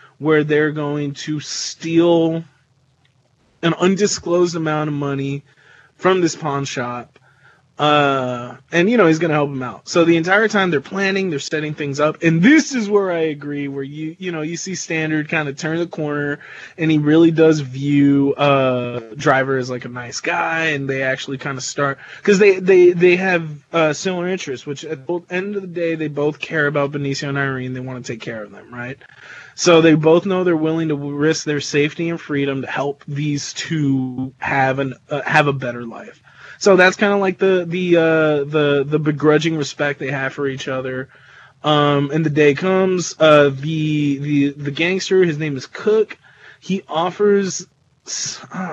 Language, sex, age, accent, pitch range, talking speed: English, male, 20-39, American, 140-175 Hz, 195 wpm